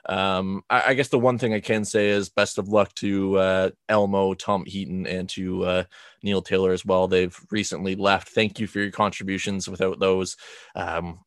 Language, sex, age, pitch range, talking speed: English, male, 20-39, 95-110 Hz, 195 wpm